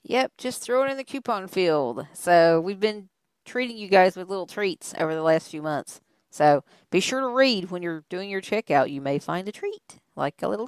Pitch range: 175-255 Hz